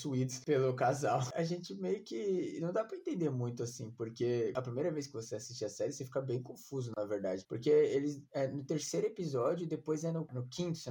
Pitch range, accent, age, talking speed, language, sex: 120-155 Hz, Brazilian, 20-39, 215 wpm, Portuguese, male